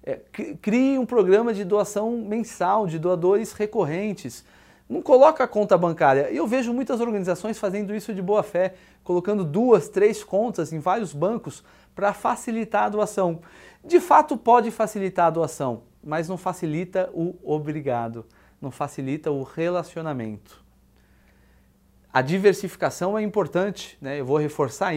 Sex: male